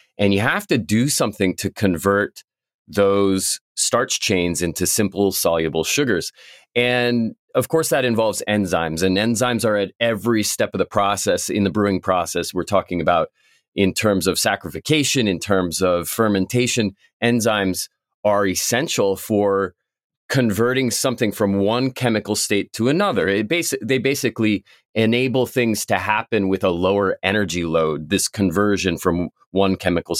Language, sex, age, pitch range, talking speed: English, male, 30-49, 95-120 Hz, 145 wpm